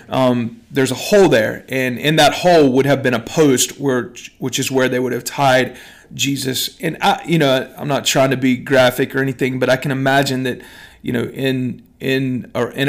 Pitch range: 125-145 Hz